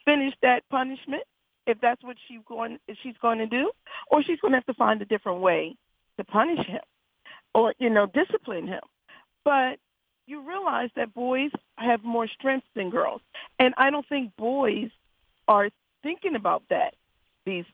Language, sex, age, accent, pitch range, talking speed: English, female, 40-59, American, 205-295 Hz, 170 wpm